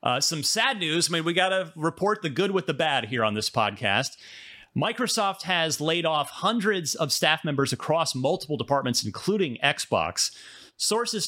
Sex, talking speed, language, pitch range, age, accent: male, 175 wpm, English, 125-170 Hz, 30-49, American